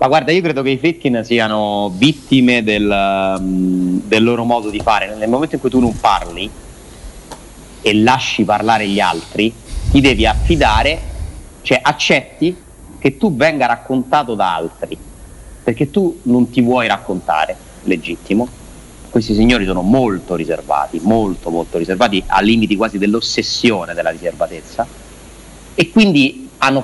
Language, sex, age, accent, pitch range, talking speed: Italian, male, 40-59, native, 100-140 Hz, 140 wpm